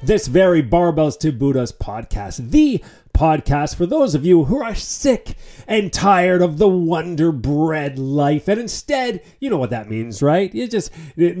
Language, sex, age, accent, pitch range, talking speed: English, male, 40-59, American, 155-210 Hz, 175 wpm